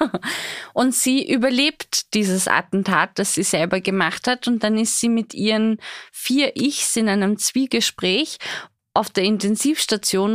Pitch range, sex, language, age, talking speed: 195-235 Hz, female, German, 20-39, 140 wpm